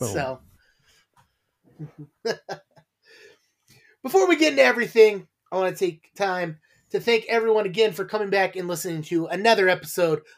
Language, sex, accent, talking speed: English, male, American, 135 wpm